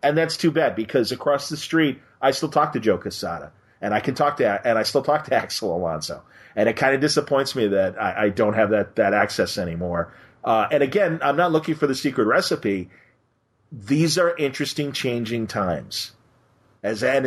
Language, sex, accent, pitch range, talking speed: English, male, American, 105-135 Hz, 200 wpm